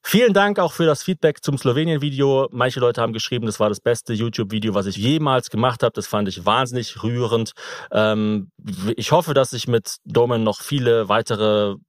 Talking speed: 180 wpm